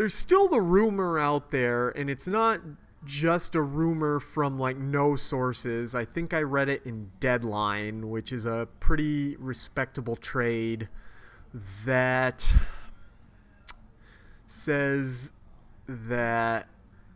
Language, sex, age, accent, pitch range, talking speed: English, male, 30-49, American, 120-150 Hz, 110 wpm